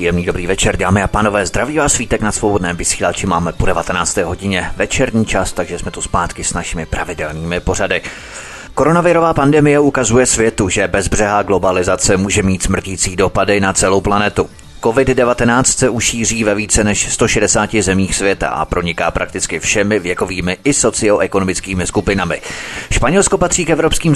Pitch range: 95-120 Hz